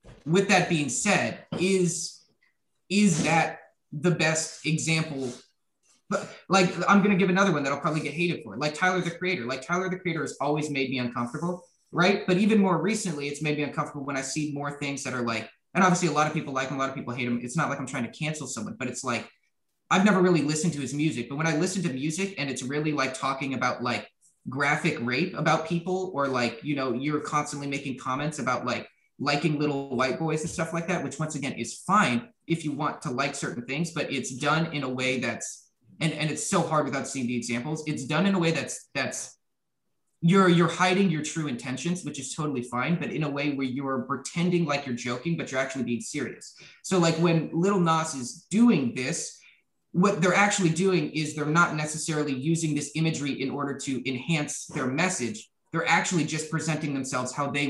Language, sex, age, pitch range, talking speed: English, male, 20-39, 135-170 Hz, 220 wpm